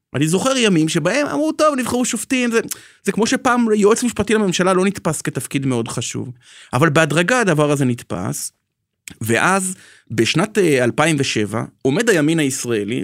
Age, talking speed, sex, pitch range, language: 30-49, 145 wpm, male, 125-185 Hz, Hebrew